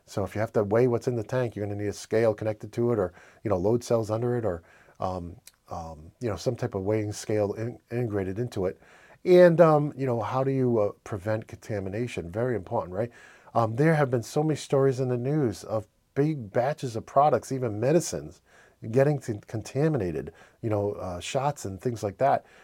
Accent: American